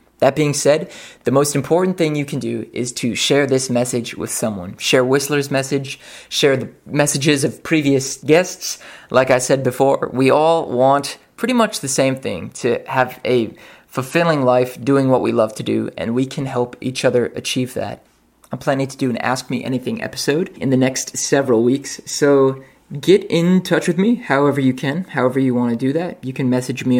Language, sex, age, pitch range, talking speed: English, male, 20-39, 125-150 Hz, 200 wpm